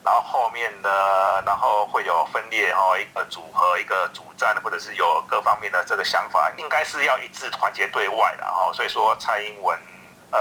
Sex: male